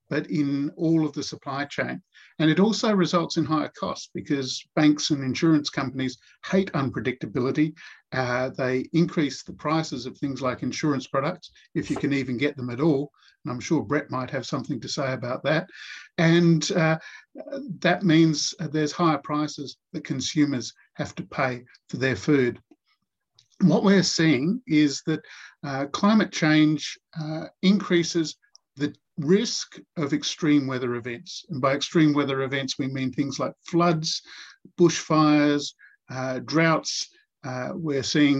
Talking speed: 150 wpm